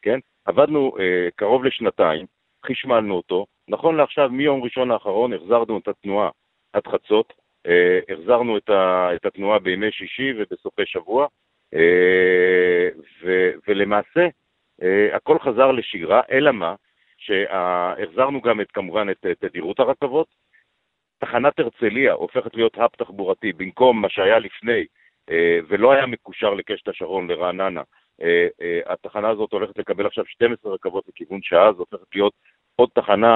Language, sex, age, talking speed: Hebrew, male, 50-69, 140 wpm